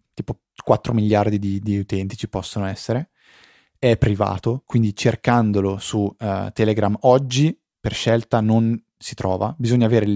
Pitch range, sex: 100-115 Hz, male